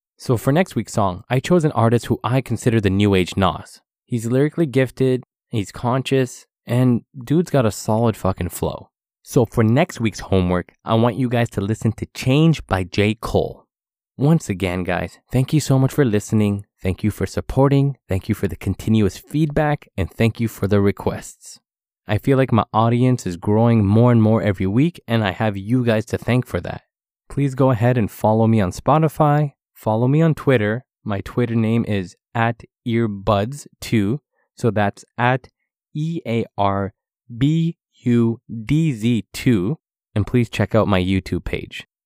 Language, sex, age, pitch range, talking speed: English, male, 20-39, 100-130 Hz, 170 wpm